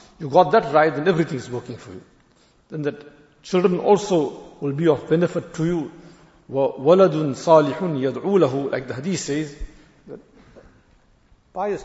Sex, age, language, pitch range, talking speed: male, 60-79, English, 140-175 Hz, 140 wpm